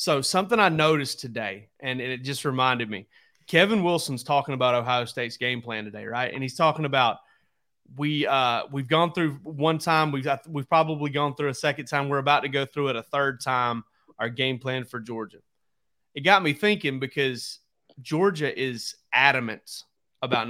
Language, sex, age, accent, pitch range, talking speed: English, male, 30-49, American, 125-155 Hz, 185 wpm